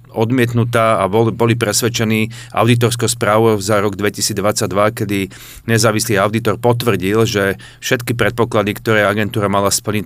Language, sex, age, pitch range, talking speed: Slovak, male, 30-49, 100-115 Hz, 120 wpm